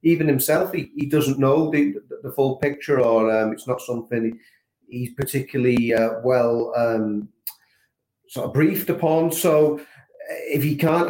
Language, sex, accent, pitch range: English, male, British, 105-130 Hz